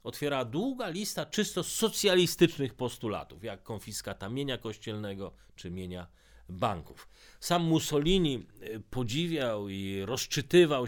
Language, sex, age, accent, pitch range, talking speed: Polish, male, 40-59, native, 100-140 Hz, 100 wpm